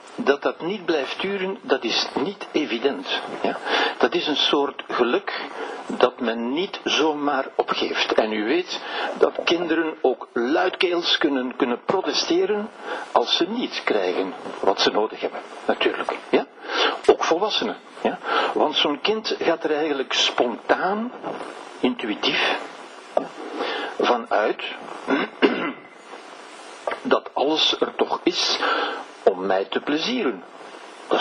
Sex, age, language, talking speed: male, 60-79, Dutch, 120 wpm